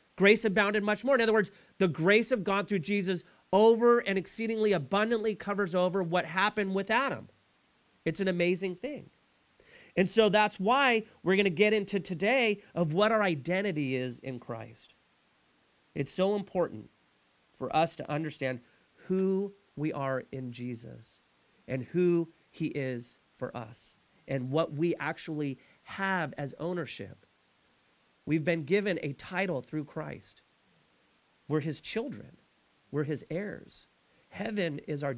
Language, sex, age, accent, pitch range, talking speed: English, male, 40-59, American, 155-215 Hz, 145 wpm